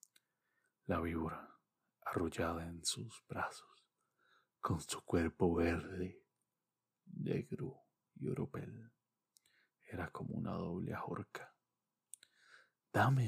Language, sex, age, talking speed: English, male, 40-59, 85 wpm